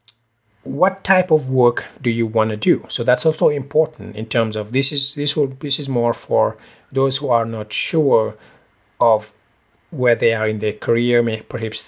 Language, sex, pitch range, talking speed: English, male, 105-130 Hz, 190 wpm